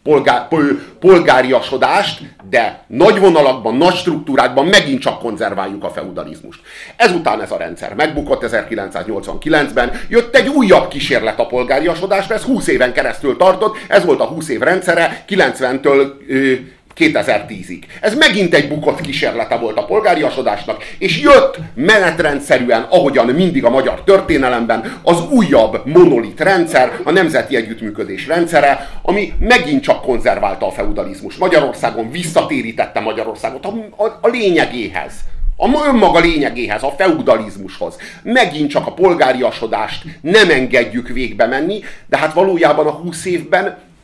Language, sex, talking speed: Hungarian, male, 130 wpm